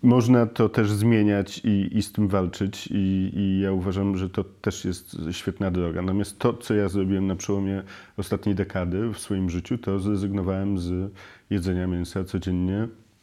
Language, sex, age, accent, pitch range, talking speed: Polish, male, 40-59, native, 95-110 Hz, 170 wpm